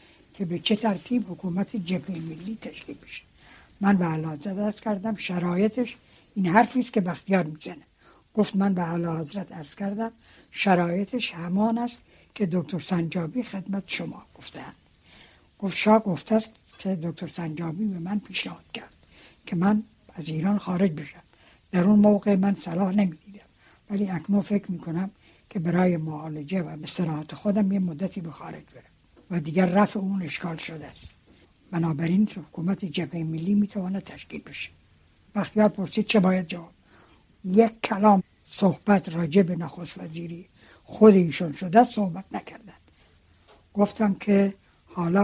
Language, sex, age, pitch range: Persian, female, 60-79, 170-205 Hz